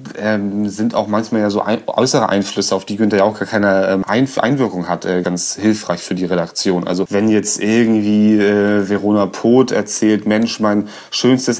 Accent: German